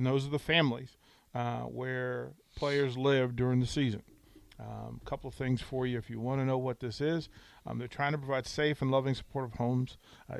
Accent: American